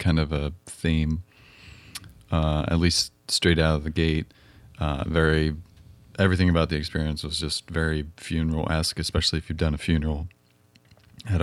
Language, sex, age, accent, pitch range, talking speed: English, male, 30-49, American, 80-90 Hz, 150 wpm